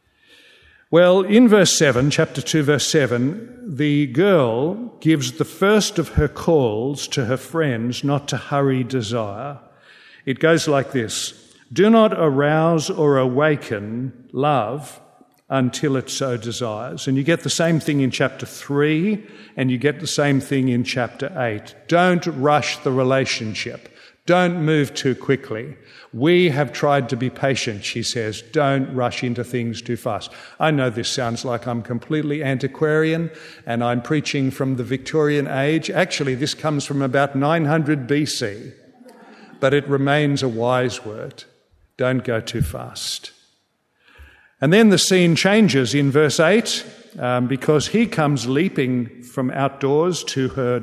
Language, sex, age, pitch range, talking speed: English, male, 50-69, 125-160 Hz, 150 wpm